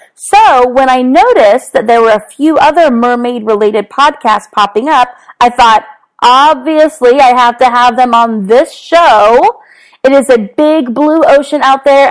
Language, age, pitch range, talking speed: English, 30-49, 225-300 Hz, 165 wpm